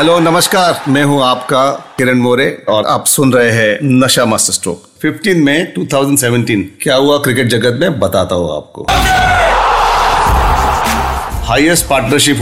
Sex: male